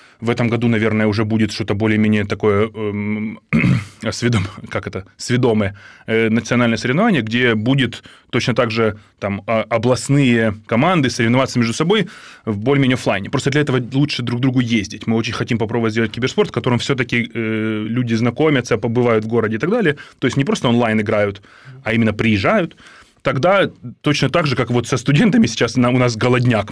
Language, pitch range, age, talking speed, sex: Ukrainian, 115-145 Hz, 20-39, 170 wpm, male